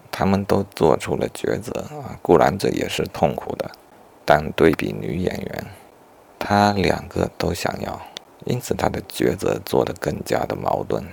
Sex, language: male, Chinese